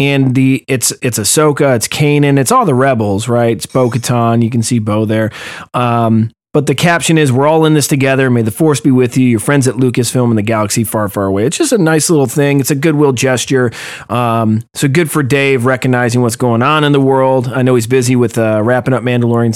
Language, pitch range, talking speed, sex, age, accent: English, 120-155 Hz, 235 wpm, male, 30-49, American